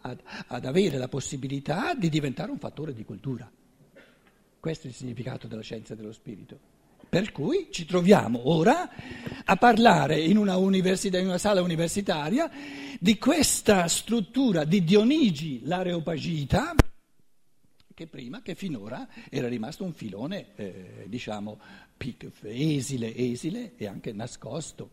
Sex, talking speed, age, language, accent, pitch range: male, 130 wpm, 60-79, Italian, native, 120-180 Hz